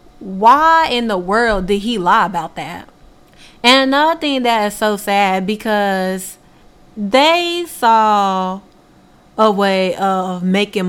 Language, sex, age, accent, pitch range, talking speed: English, female, 20-39, American, 190-225 Hz, 125 wpm